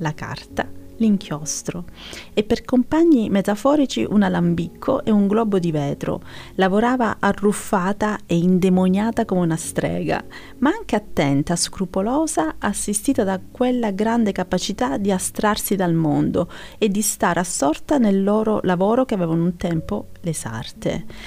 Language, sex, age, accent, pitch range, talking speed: Italian, female, 30-49, native, 170-215 Hz, 135 wpm